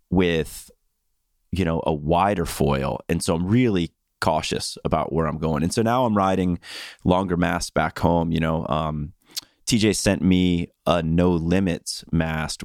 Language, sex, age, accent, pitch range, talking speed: English, male, 30-49, American, 80-100 Hz, 160 wpm